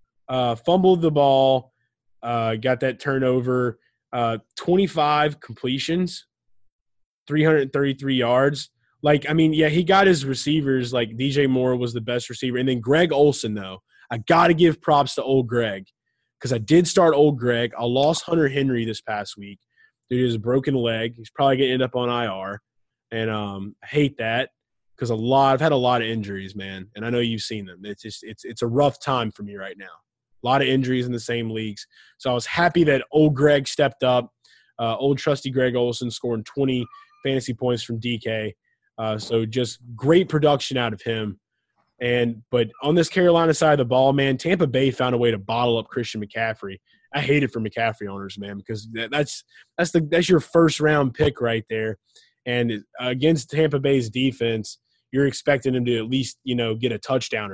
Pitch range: 115-145 Hz